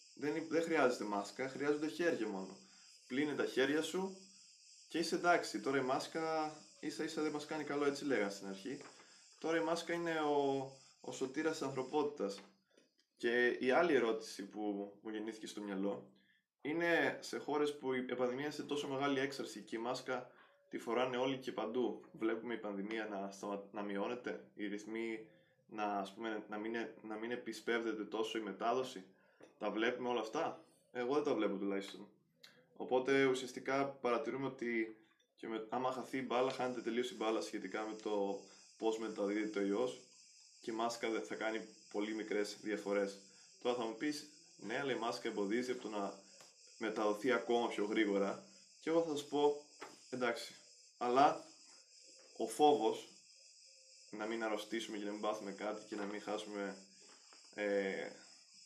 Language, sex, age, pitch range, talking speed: Greek, male, 20-39, 105-145 Hz, 160 wpm